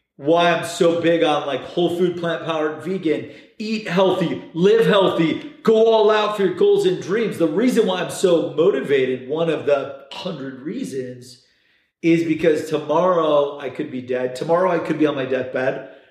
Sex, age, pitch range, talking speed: male, 40-59, 140-185 Hz, 180 wpm